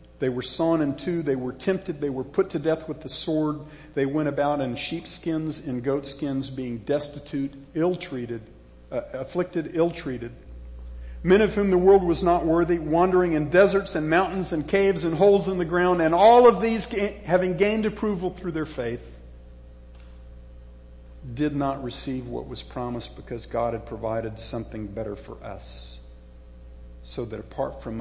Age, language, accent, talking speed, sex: 50-69, English, American, 165 wpm, male